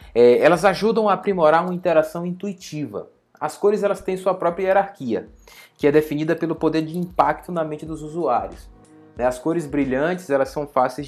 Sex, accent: male, Brazilian